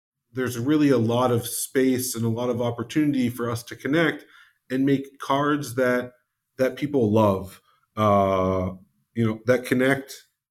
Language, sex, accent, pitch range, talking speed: English, male, American, 105-135 Hz, 155 wpm